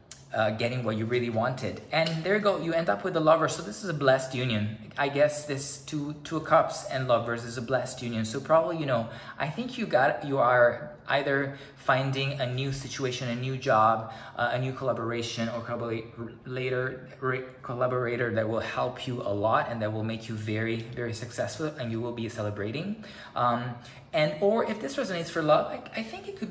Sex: male